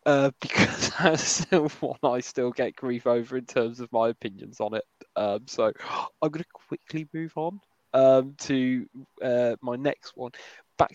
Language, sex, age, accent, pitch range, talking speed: English, male, 20-39, British, 125-155 Hz, 165 wpm